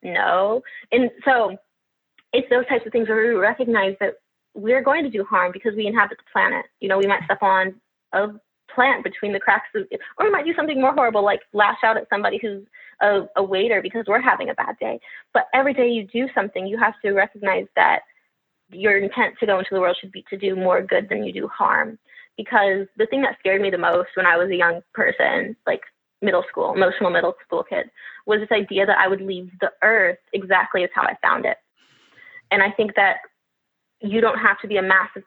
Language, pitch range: English, 190-235 Hz